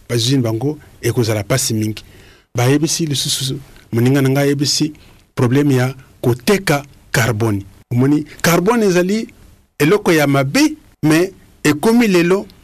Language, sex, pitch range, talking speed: English, male, 125-165 Hz, 115 wpm